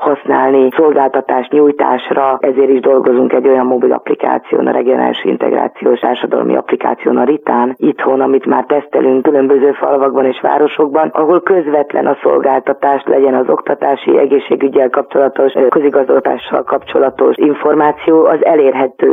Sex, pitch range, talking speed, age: female, 130-150 Hz, 120 wpm, 30-49